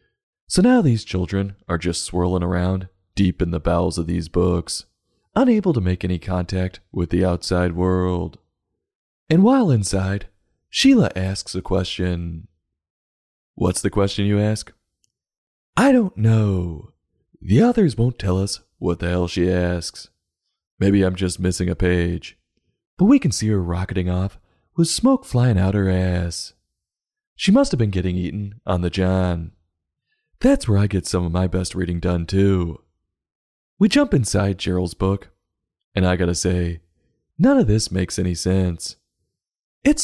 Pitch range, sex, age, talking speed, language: 90-100 Hz, male, 30-49, 155 wpm, English